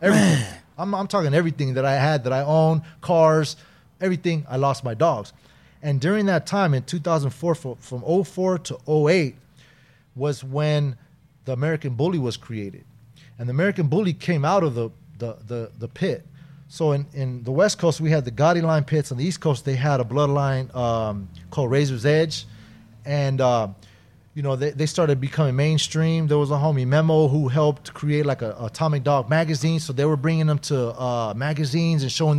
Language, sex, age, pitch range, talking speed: English, male, 30-49, 130-160 Hz, 190 wpm